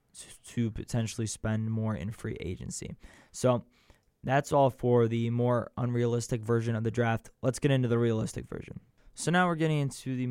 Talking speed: 175 wpm